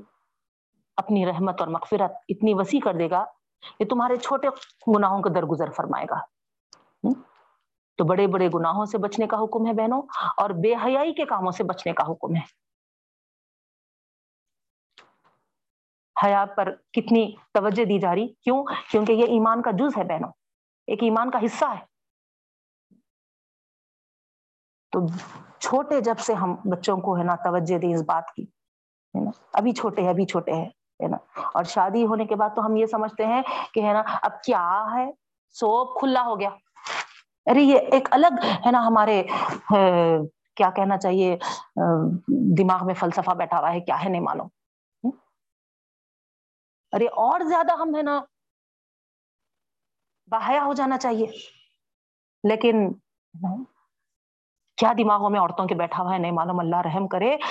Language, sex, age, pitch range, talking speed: Urdu, female, 40-59, 185-245 Hz, 140 wpm